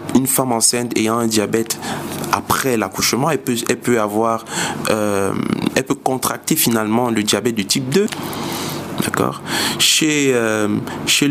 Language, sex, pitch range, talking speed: French, male, 110-130 Hz, 145 wpm